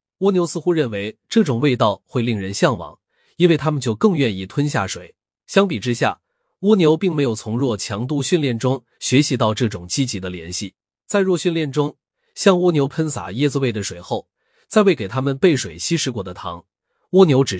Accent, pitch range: native, 105-160 Hz